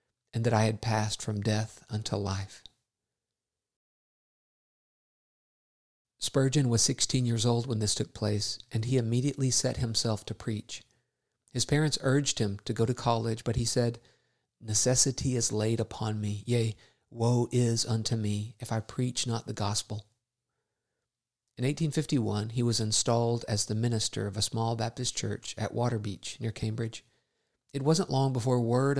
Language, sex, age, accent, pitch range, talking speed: English, male, 50-69, American, 110-130 Hz, 155 wpm